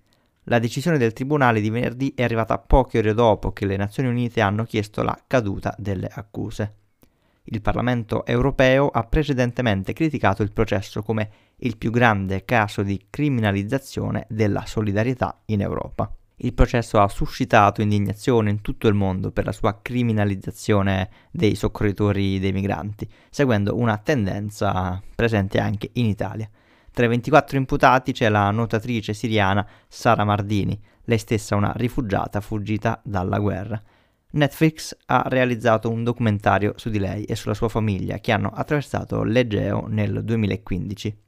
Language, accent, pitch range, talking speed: Italian, native, 100-120 Hz, 145 wpm